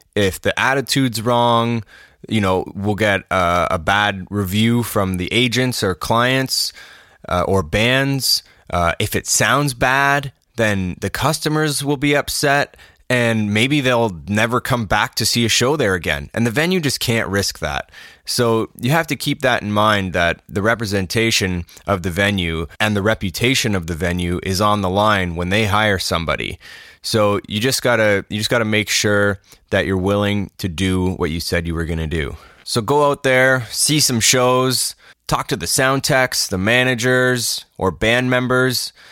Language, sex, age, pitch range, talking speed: English, male, 20-39, 100-130 Hz, 180 wpm